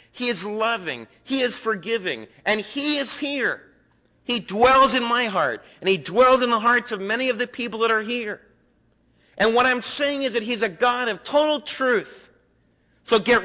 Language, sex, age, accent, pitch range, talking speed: English, male, 40-59, American, 195-255 Hz, 190 wpm